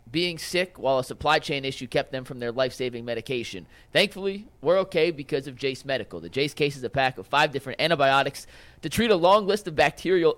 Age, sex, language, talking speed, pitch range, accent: 30-49, male, English, 215 wpm, 120-155 Hz, American